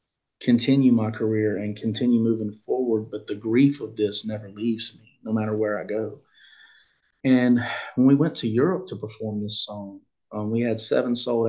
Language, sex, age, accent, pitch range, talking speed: English, male, 30-49, American, 110-125 Hz, 185 wpm